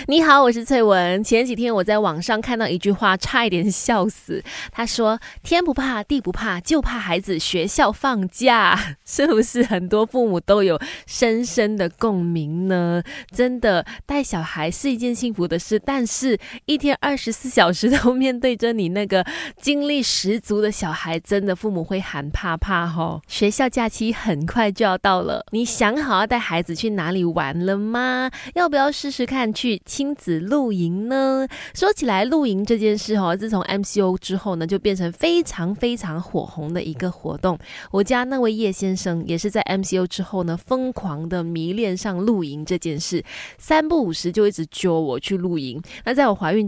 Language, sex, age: Chinese, female, 20-39